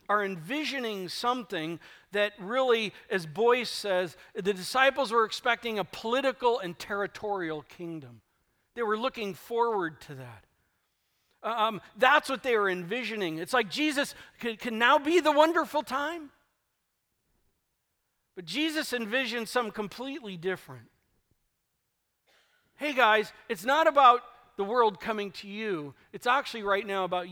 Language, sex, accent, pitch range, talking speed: English, male, American, 160-235 Hz, 130 wpm